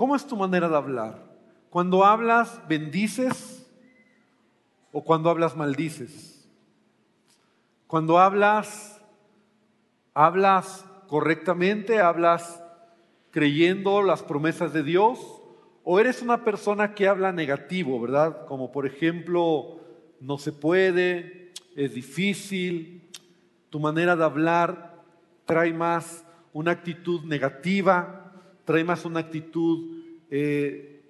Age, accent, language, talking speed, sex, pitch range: 40-59, Mexican, Spanish, 100 wpm, male, 160-200 Hz